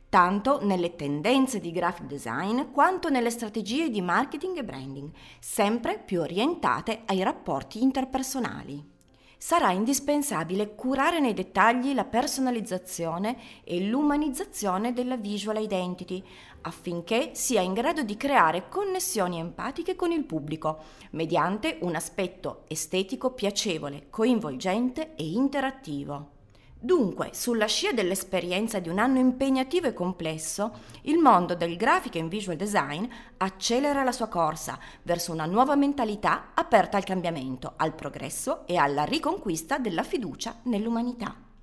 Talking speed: 125 wpm